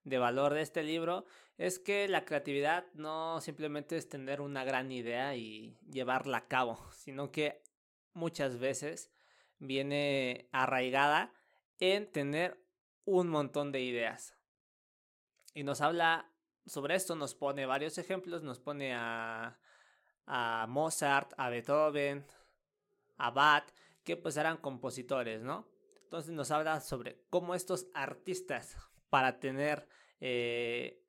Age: 20-39